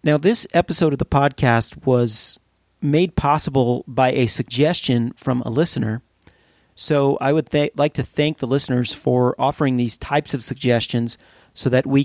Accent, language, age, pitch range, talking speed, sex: American, English, 40-59, 120-140 Hz, 160 wpm, male